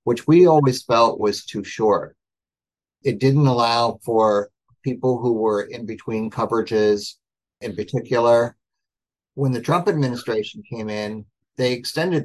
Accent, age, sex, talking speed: American, 50-69, male, 130 wpm